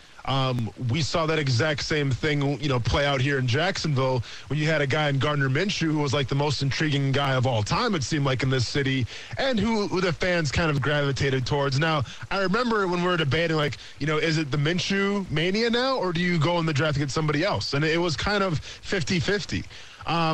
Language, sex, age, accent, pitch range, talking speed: English, male, 20-39, American, 135-165 Hz, 235 wpm